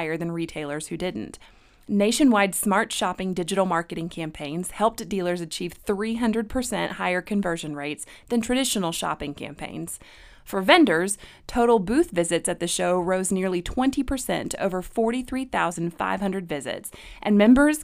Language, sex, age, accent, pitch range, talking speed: English, female, 30-49, American, 170-220 Hz, 130 wpm